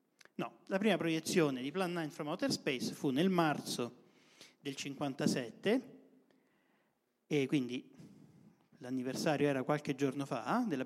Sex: male